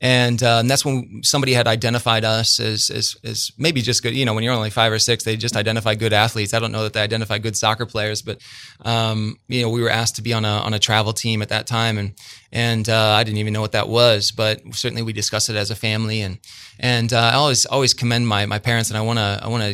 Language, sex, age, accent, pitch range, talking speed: English, male, 20-39, American, 110-125 Hz, 270 wpm